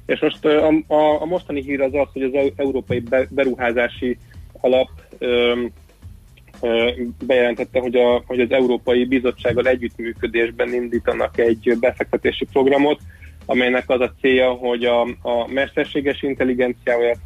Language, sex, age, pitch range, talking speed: Hungarian, male, 30-49, 115-135 Hz, 120 wpm